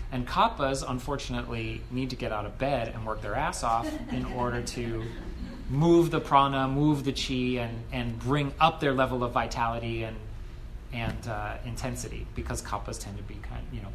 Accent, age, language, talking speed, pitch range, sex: American, 30-49, English, 185 wpm, 110-135 Hz, male